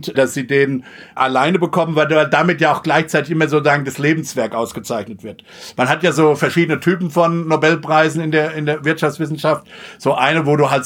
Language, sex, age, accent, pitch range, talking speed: German, male, 60-79, German, 140-175 Hz, 180 wpm